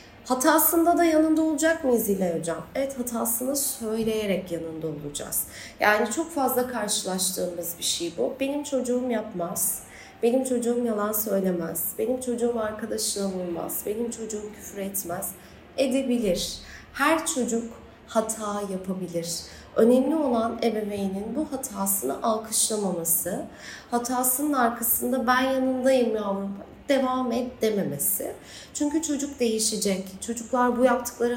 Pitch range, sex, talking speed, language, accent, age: 195-260 Hz, female, 110 wpm, Turkish, native, 30-49